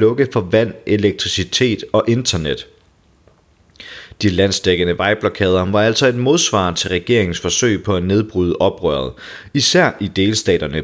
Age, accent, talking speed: 30-49, native, 120 wpm